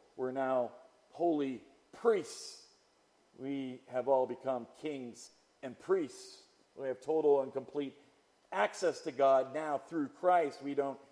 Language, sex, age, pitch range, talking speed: English, male, 50-69, 155-230 Hz, 130 wpm